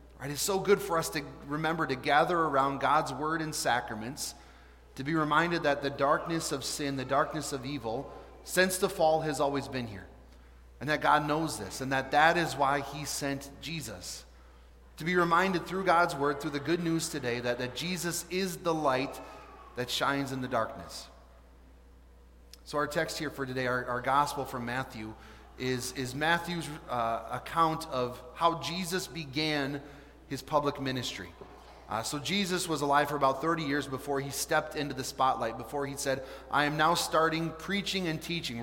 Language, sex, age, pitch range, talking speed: English, male, 30-49, 125-160 Hz, 180 wpm